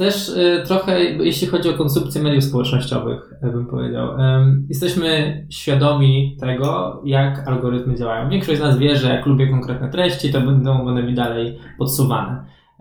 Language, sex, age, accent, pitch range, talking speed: Polish, male, 20-39, native, 125-145 Hz, 155 wpm